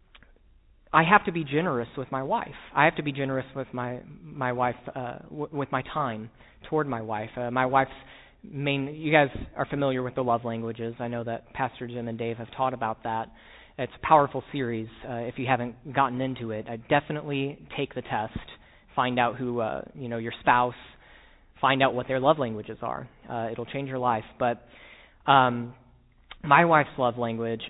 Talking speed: 195 wpm